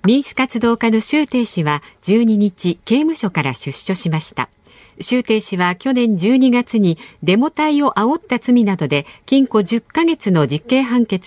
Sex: female